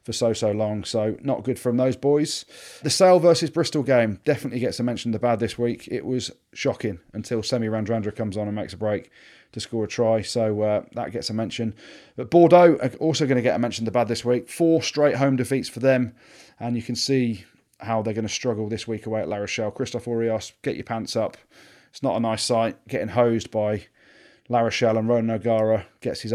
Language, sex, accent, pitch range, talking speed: English, male, British, 110-125 Hz, 230 wpm